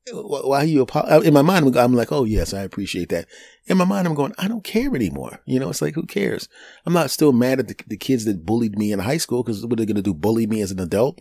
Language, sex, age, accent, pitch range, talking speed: English, male, 30-49, American, 100-145 Hz, 290 wpm